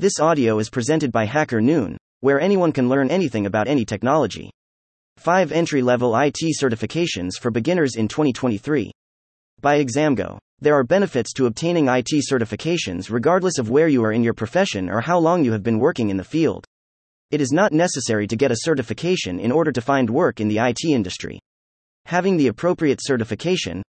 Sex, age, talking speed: male, 30-49, 180 wpm